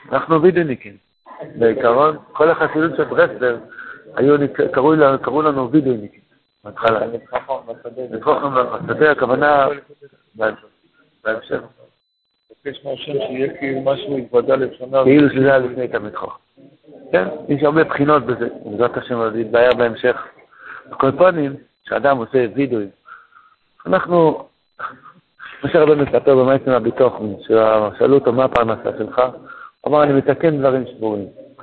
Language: Hebrew